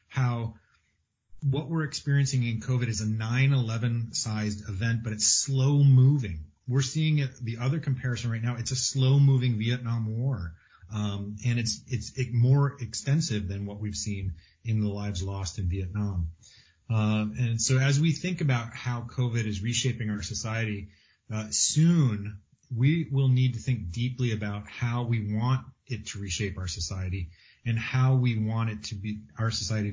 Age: 30-49